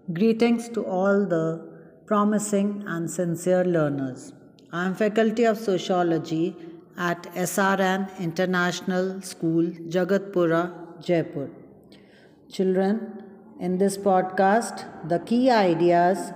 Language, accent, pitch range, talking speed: English, Indian, 180-210 Hz, 95 wpm